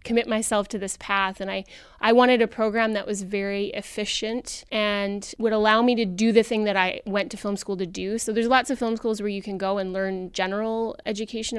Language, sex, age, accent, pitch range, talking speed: English, female, 20-39, American, 190-210 Hz, 235 wpm